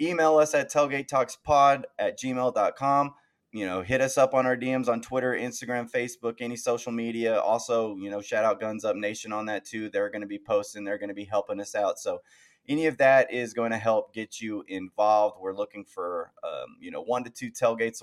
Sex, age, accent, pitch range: male, 20-39, American, 105-125 Hz